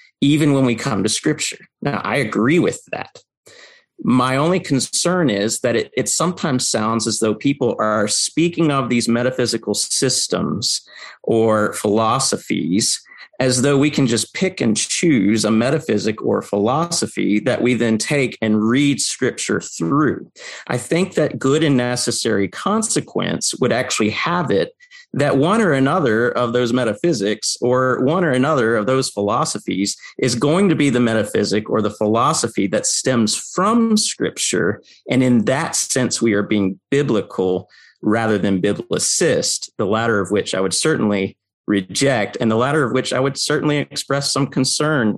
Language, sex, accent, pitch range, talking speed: English, male, American, 110-145 Hz, 160 wpm